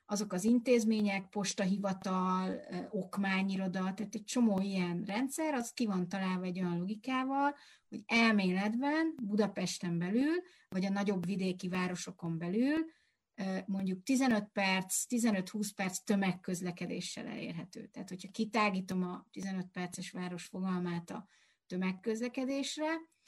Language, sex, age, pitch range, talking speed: Hungarian, female, 30-49, 185-225 Hz, 115 wpm